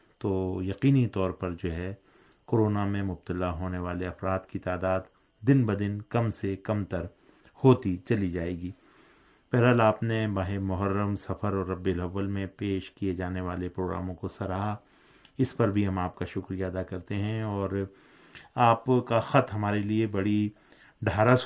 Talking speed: 170 wpm